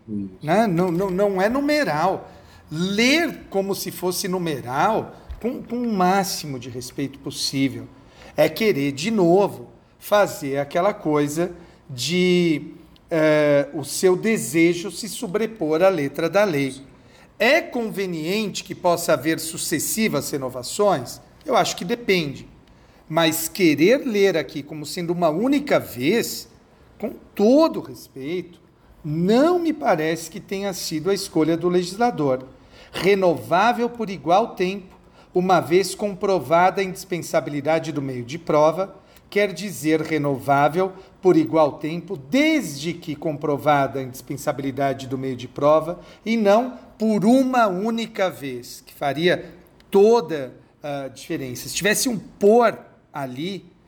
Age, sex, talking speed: 50-69, male, 125 wpm